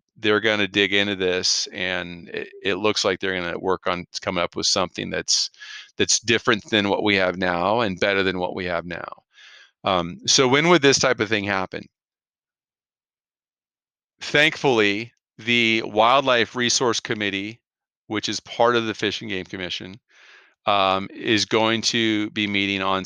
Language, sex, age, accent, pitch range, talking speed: English, male, 40-59, American, 95-110 Hz, 170 wpm